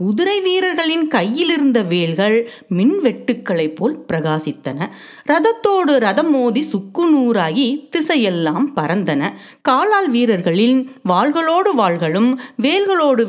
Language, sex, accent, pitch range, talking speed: Tamil, female, native, 180-275 Hz, 85 wpm